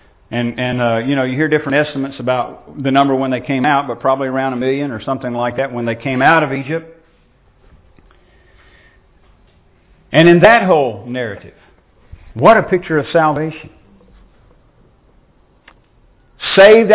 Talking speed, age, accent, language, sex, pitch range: 150 wpm, 50-69, American, English, male, 105-145 Hz